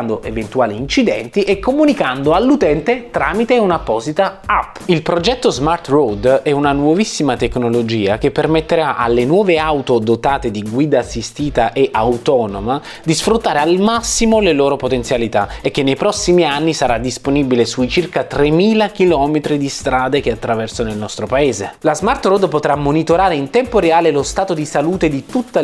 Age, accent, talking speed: 20-39, native, 155 wpm